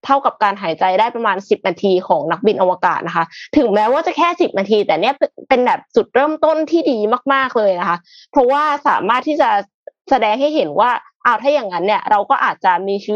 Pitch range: 195-275 Hz